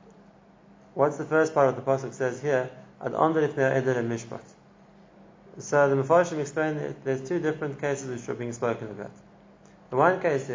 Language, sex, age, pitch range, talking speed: English, male, 30-49, 125-150 Hz, 155 wpm